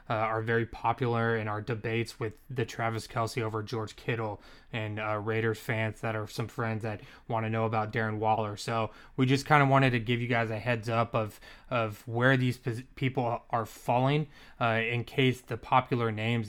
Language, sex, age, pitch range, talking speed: English, male, 20-39, 110-120 Hz, 205 wpm